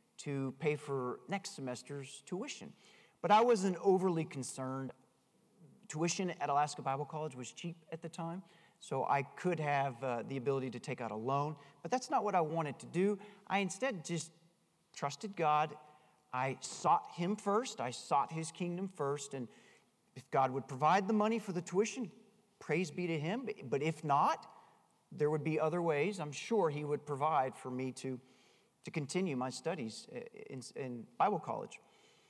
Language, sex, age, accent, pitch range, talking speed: English, male, 40-59, American, 140-195 Hz, 175 wpm